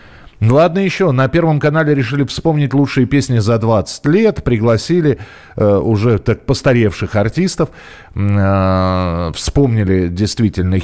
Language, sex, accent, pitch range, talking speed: Russian, male, native, 100-135 Hz, 120 wpm